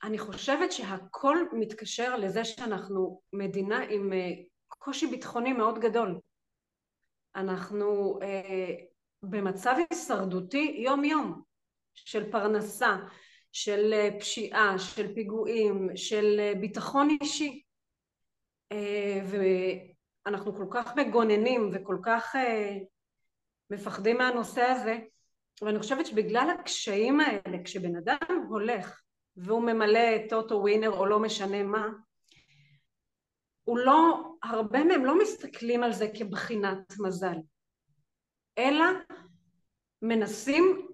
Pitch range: 200-245 Hz